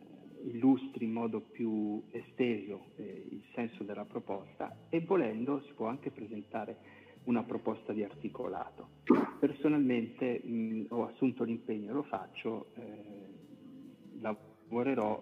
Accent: native